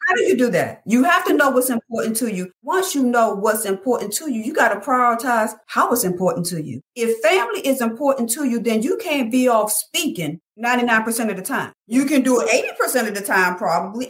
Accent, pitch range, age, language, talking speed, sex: American, 200-270 Hz, 40-59, English, 225 wpm, female